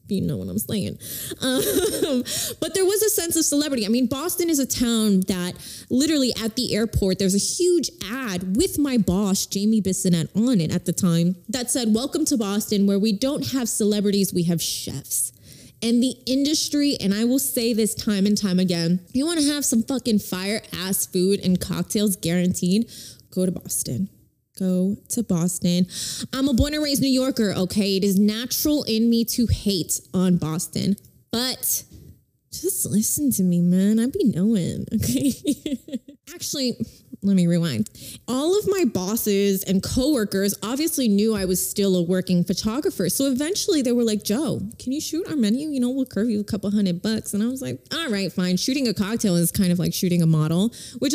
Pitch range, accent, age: 185-260 Hz, American, 20-39